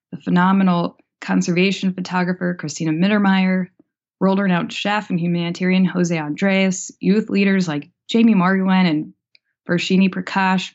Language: English